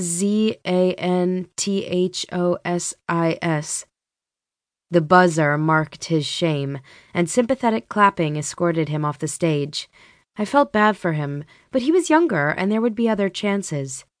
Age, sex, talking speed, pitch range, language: 20-39, female, 125 wpm, 160-200 Hz, English